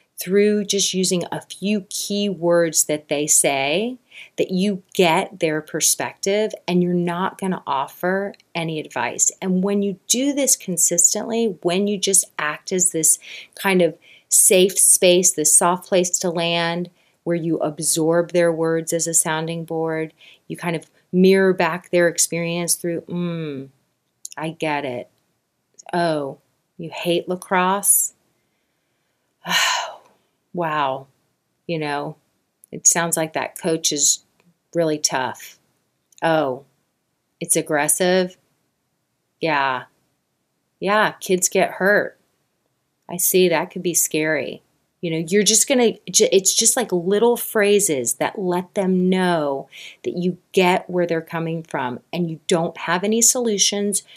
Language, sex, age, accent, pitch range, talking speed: English, female, 30-49, American, 160-190 Hz, 135 wpm